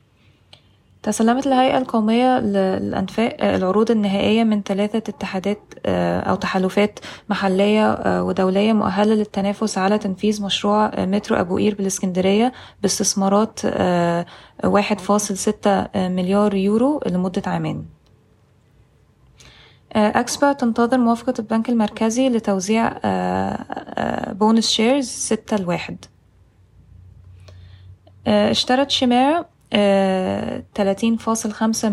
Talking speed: 80 wpm